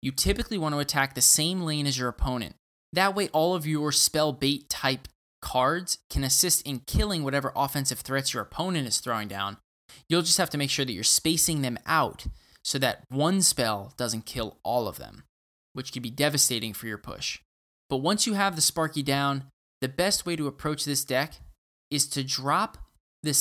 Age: 20-39